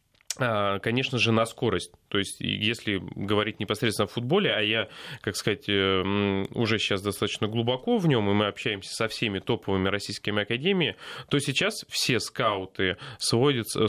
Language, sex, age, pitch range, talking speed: Russian, male, 20-39, 105-135 Hz, 145 wpm